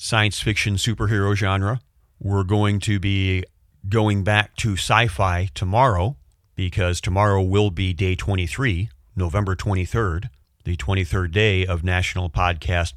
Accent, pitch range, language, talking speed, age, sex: American, 90-105 Hz, English, 125 wpm, 40-59, male